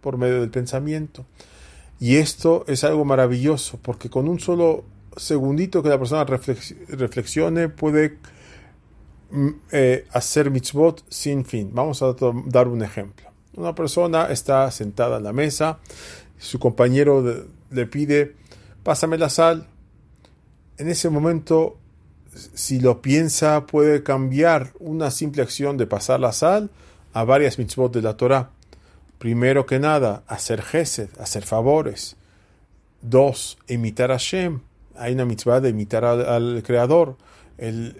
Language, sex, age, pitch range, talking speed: English, male, 40-59, 120-150 Hz, 135 wpm